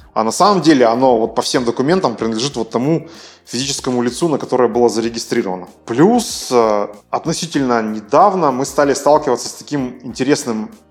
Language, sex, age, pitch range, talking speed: Russian, male, 20-39, 125-170 Hz, 145 wpm